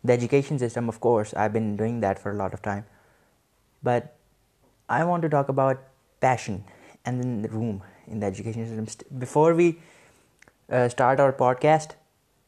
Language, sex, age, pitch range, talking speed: Urdu, male, 20-39, 120-140 Hz, 165 wpm